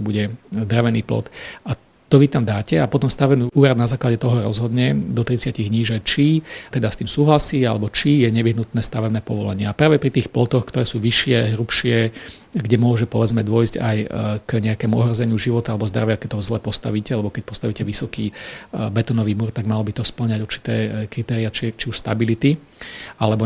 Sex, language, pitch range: male, Slovak, 110-130 Hz